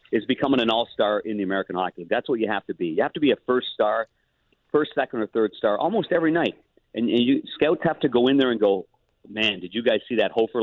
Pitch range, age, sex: 110-135 Hz, 50-69, male